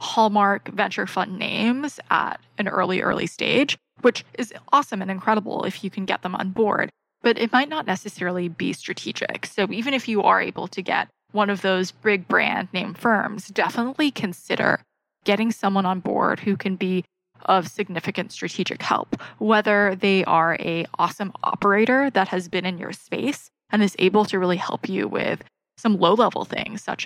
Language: English